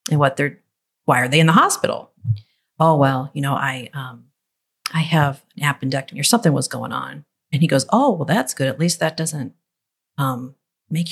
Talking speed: 200 wpm